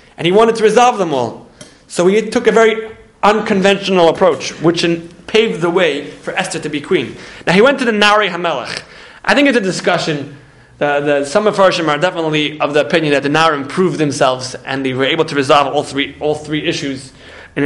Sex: male